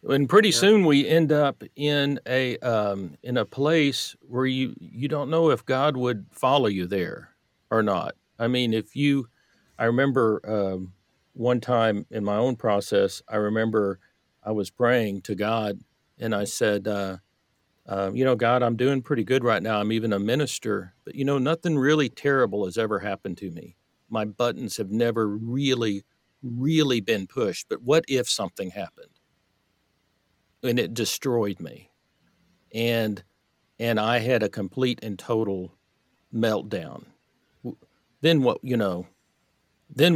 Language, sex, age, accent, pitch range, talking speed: English, male, 50-69, American, 105-135 Hz, 155 wpm